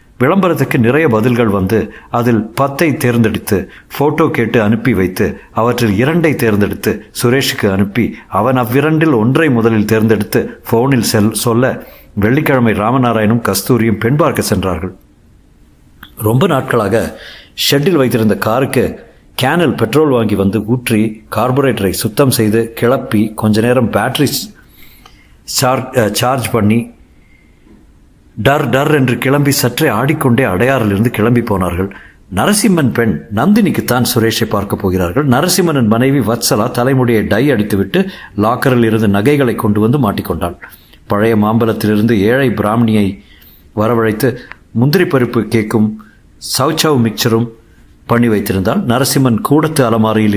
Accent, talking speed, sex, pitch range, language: native, 105 wpm, male, 105-130 Hz, Tamil